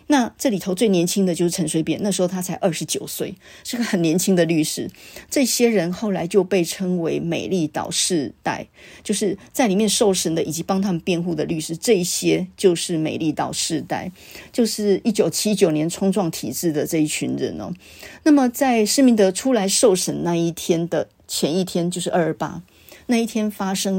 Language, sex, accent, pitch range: Chinese, female, American, 170-215 Hz